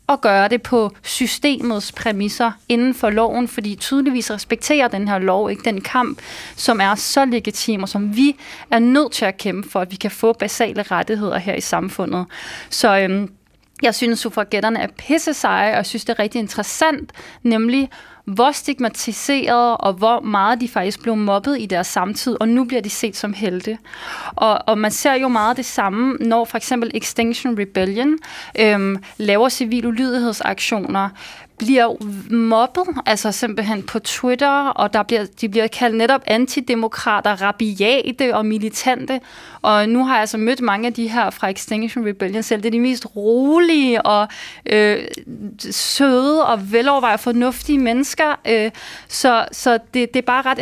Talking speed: 170 wpm